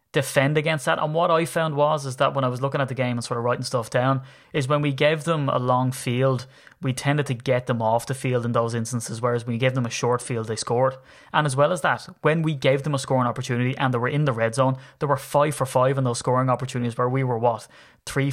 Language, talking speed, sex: English, 280 wpm, male